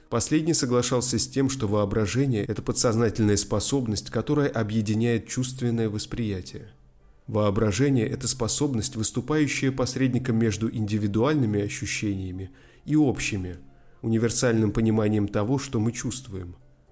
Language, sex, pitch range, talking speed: Russian, male, 110-130 Hz, 105 wpm